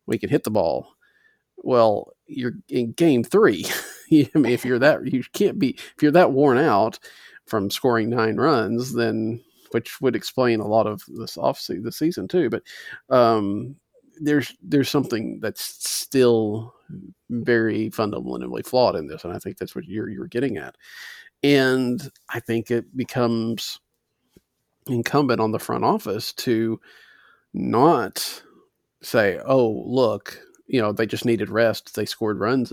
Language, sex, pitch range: English, male, 110-130 Hz